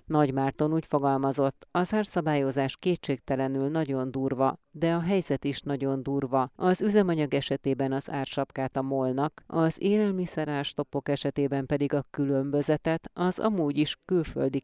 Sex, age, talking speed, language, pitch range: female, 30-49, 130 wpm, Hungarian, 130-150 Hz